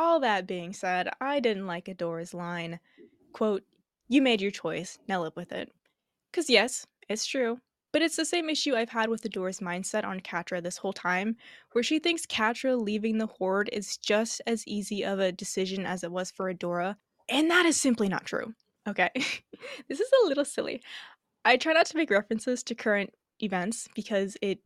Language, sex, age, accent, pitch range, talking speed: English, female, 10-29, American, 185-235 Hz, 190 wpm